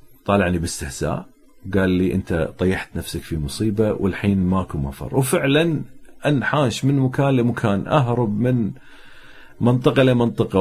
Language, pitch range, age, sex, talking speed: Arabic, 95-130 Hz, 40-59, male, 120 wpm